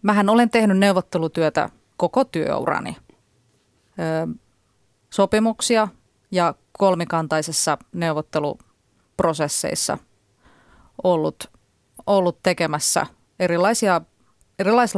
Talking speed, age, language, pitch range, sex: 55 wpm, 30-49, Finnish, 160-210 Hz, female